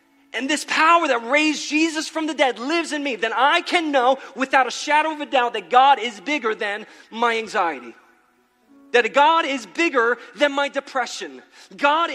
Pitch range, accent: 230-290 Hz, American